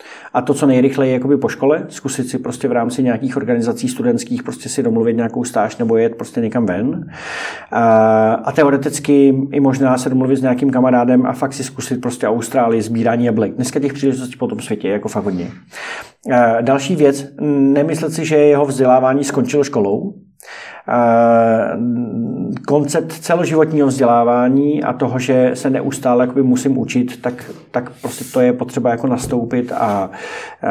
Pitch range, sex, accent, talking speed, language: 125-150 Hz, male, native, 160 wpm, Czech